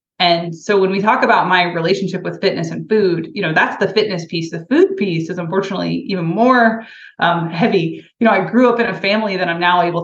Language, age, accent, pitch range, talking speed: English, 20-39, American, 170-205 Hz, 235 wpm